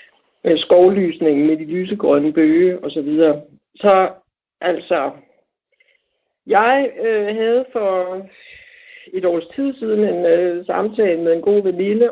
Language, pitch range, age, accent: Danish, 170-230 Hz, 60-79, native